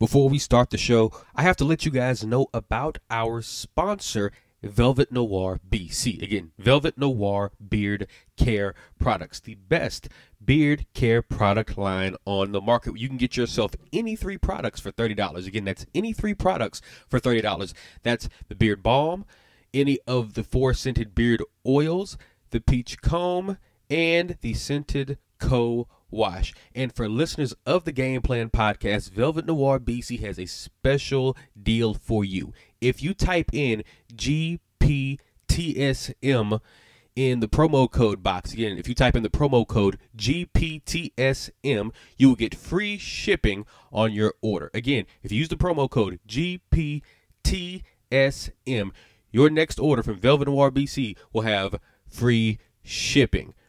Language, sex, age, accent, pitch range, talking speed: English, male, 30-49, American, 110-140 Hz, 145 wpm